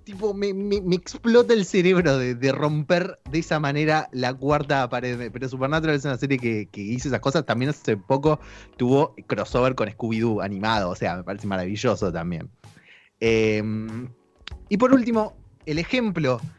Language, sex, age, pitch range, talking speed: Spanish, male, 20-39, 120-195 Hz, 170 wpm